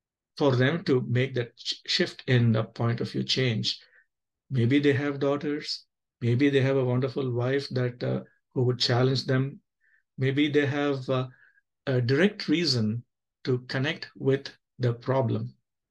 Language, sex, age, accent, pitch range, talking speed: English, male, 50-69, Indian, 120-150 Hz, 150 wpm